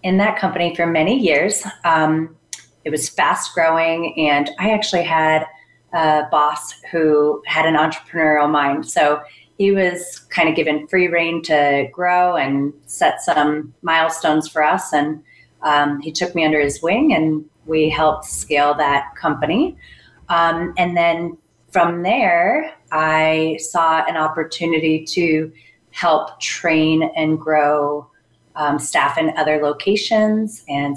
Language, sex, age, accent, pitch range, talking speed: English, female, 30-49, American, 145-170 Hz, 140 wpm